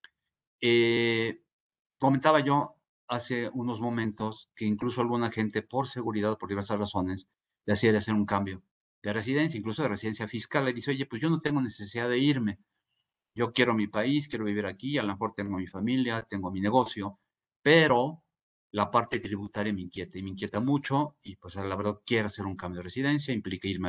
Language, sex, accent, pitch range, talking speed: Spanish, male, Mexican, 95-120 Hz, 185 wpm